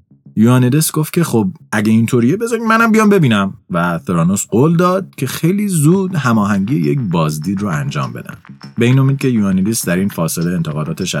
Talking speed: 170 wpm